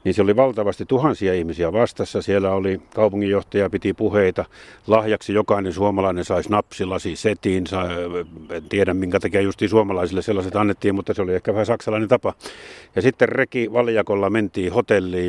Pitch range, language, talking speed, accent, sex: 95-115 Hz, Finnish, 155 wpm, native, male